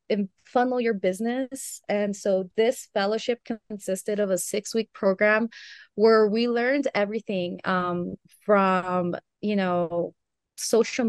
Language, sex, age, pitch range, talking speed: English, female, 20-39, 180-210 Hz, 120 wpm